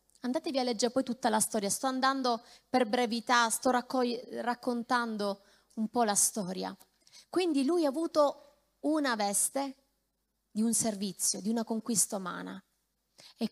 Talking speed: 140 wpm